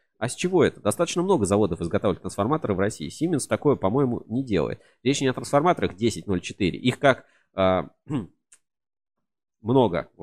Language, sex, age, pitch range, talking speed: Russian, male, 30-49, 90-135 Hz, 155 wpm